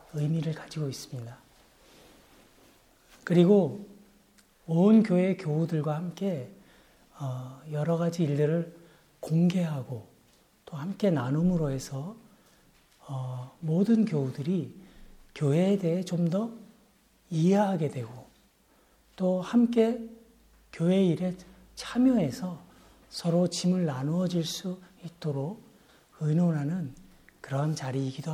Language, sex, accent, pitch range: Korean, male, native, 140-185 Hz